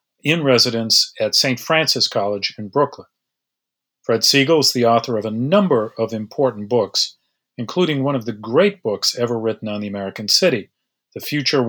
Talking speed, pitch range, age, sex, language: 170 wpm, 110-130 Hz, 40-59, male, English